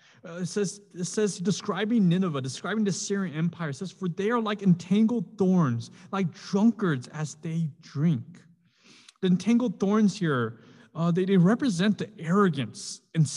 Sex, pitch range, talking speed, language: male, 155-200 Hz, 155 wpm, English